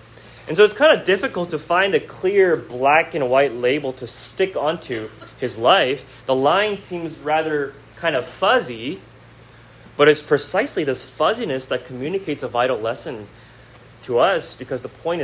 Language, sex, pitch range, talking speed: English, male, 120-165 Hz, 160 wpm